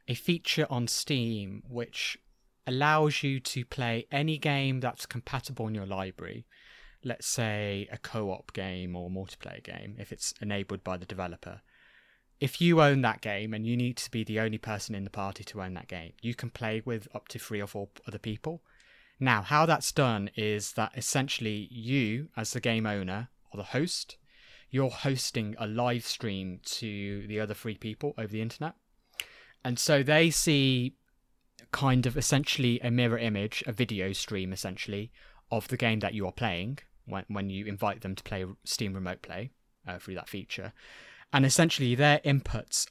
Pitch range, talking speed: 105-135 Hz, 180 wpm